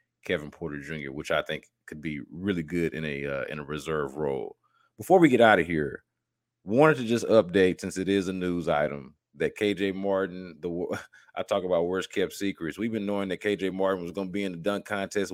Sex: male